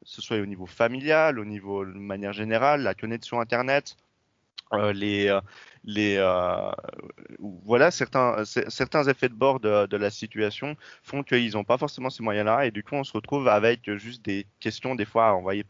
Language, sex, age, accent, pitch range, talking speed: French, male, 30-49, French, 105-130 Hz, 180 wpm